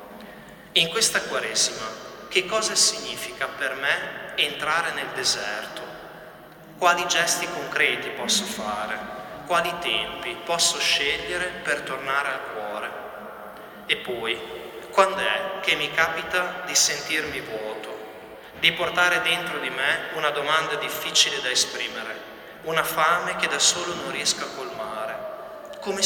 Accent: native